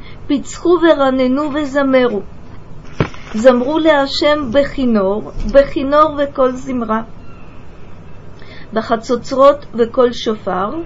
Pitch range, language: 245-290 Hz, Russian